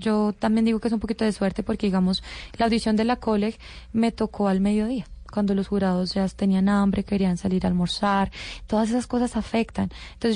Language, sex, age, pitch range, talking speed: Spanish, female, 20-39, 190-230 Hz, 205 wpm